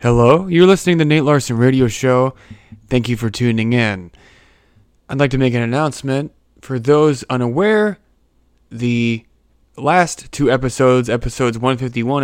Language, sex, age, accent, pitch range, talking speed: English, male, 20-39, American, 110-135 Hz, 135 wpm